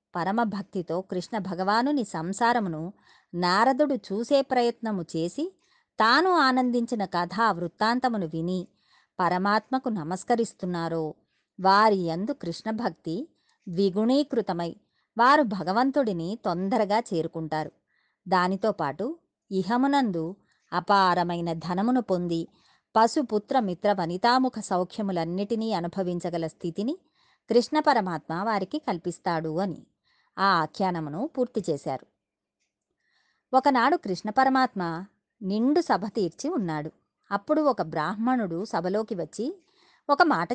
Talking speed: 85 wpm